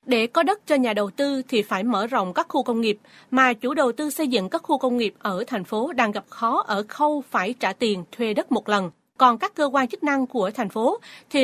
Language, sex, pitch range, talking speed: Vietnamese, female, 220-285 Hz, 260 wpm